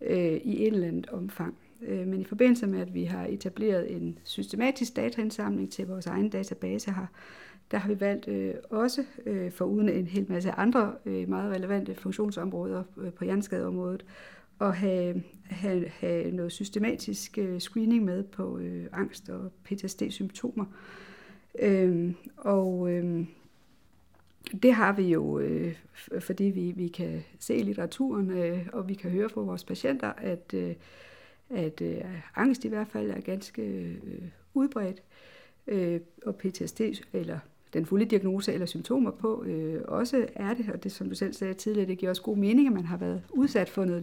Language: Danish